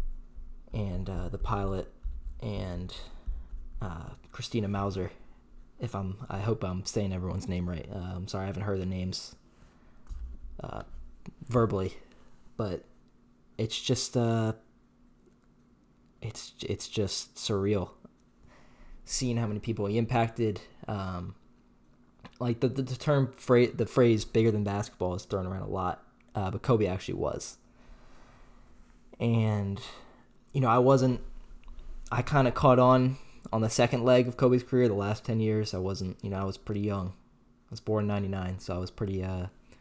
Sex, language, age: male, English, 20-39